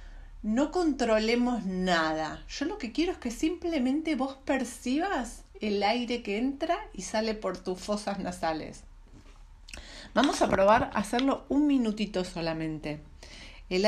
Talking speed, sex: 130 wpm, female